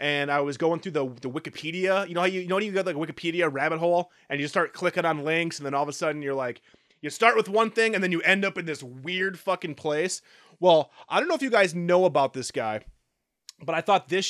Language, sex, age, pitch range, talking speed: English, male, 30-49, 150-200 Hz, 280 wpm